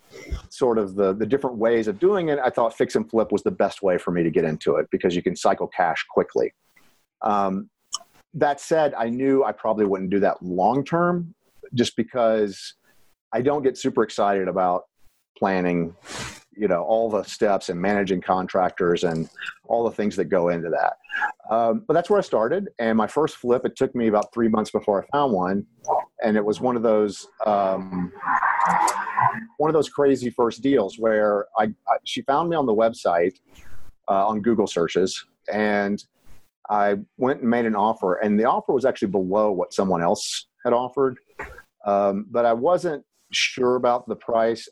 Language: English